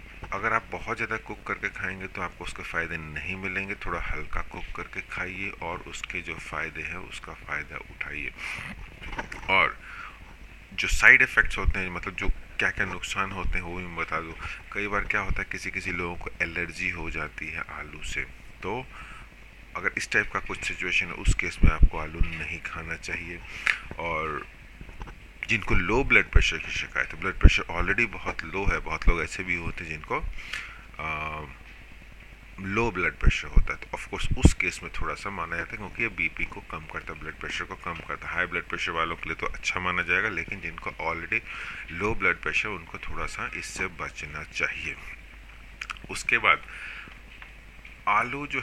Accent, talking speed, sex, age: Indian, 150 wpm, male, 30-49